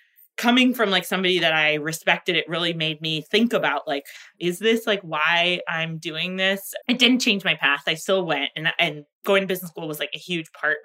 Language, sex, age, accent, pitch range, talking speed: English, female, 20-39, American, 165-210 Hz, 220 wpm